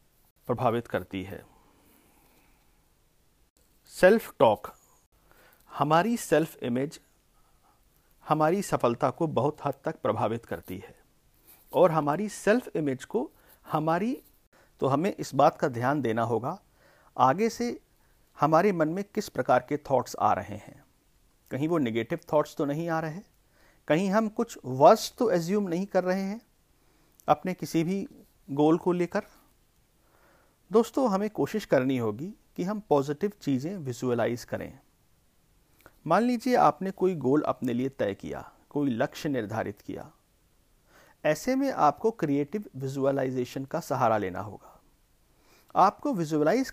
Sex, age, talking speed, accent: male, 50-69, 130 wpm, native